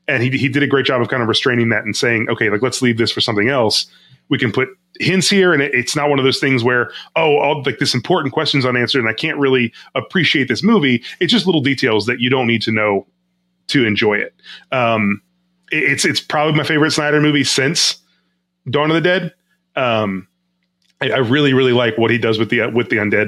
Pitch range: 115-150 Hz